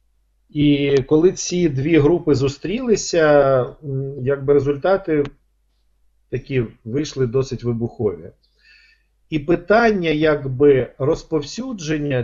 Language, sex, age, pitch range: Ukrainian, male, 40-59, 125-155 Hz